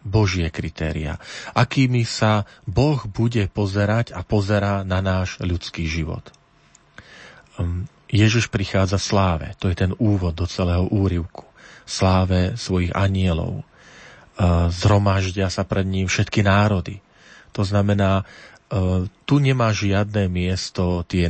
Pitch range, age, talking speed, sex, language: 90-110 Hz, 40-59, 110 wpm, male, Slovak